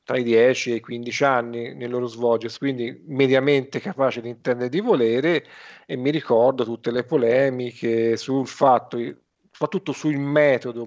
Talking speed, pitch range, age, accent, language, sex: 155 wpm, 120-145 Hz, 40-59, native, Italian, male